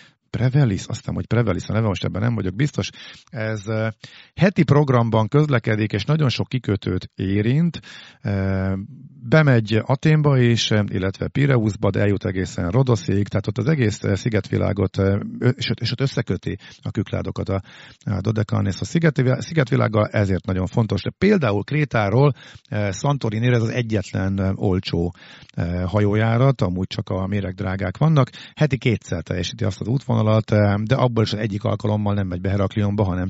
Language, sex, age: Hungarian, male, 50-69